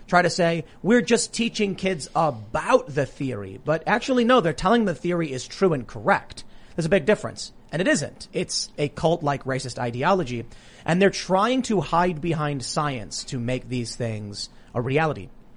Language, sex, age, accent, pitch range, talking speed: English, male, 30-49, American, 130-175 Hz, 180 wpm